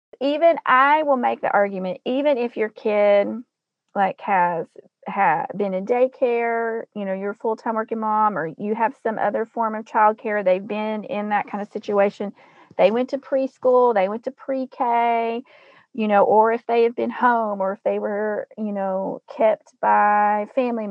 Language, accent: English, American